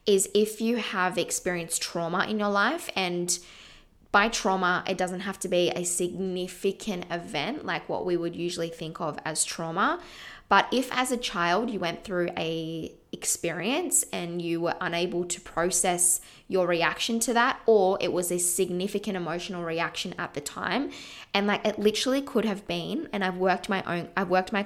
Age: 20-39